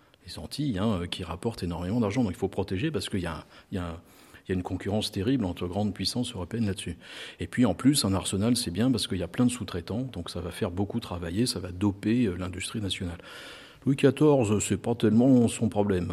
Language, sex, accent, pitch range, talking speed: French, male, French, 90-115 Hz, 230 wpm